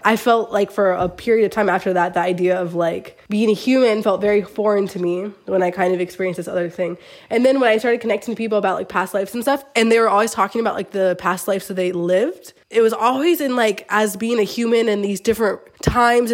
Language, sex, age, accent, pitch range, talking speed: English, female, 20-39, American, 185-225 Hz, 255 wpm